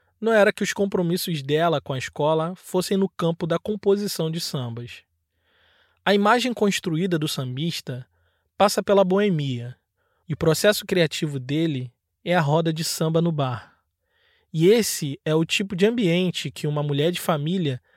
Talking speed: 160 wpm